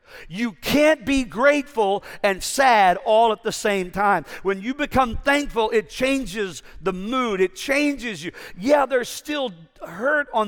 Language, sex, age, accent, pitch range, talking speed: English, male, 50-69, American, 145-205 Hz, 155 wpm